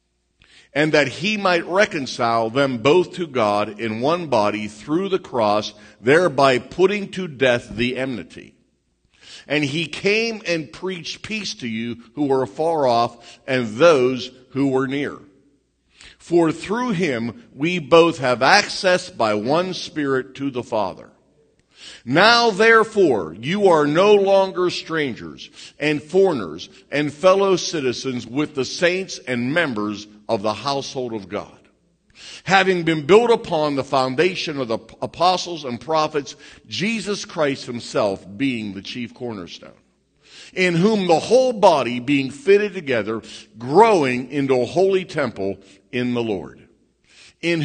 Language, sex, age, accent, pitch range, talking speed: English, male, 50-69, American, 125-185 Hz, 135 wpm